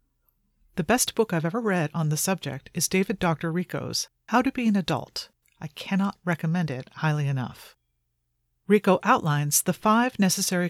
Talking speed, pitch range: 165 wpm, 130-195 Hz